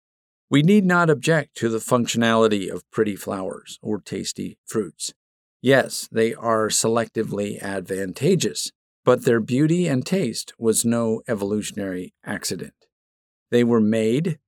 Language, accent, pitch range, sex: English, American, 110-140 Hz, male